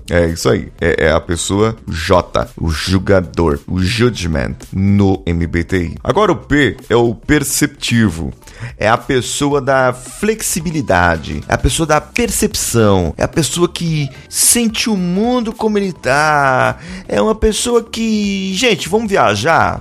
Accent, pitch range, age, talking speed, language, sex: Brazilian, 110-180 Hz, 30-49, 140 wpm, Portuguese, male